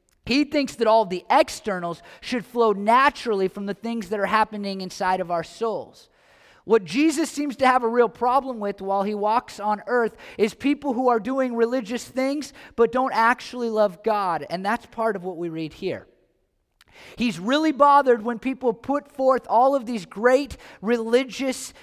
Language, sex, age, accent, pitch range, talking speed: English, male, 30-49, American, 195-255 Hz, 180 wpm